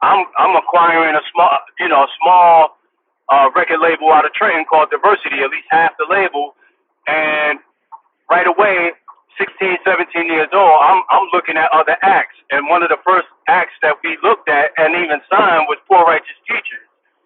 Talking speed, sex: 180 wpm, male